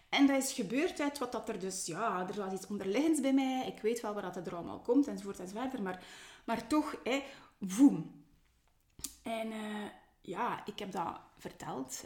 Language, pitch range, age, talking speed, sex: Dutch, 185-250 Hz, 20-39, 190 wpm, female